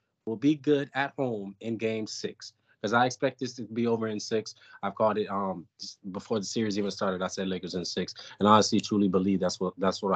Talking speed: 235 wpm